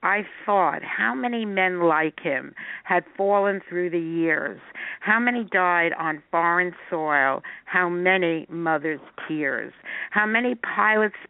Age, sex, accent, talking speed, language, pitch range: 60-79, female, American, 135 wpm, English, 160-185 Hz